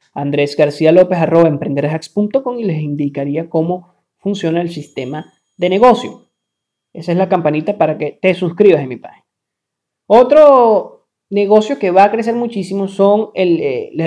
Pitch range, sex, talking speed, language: 155-200 Hz, male, 145 wpm, Spanish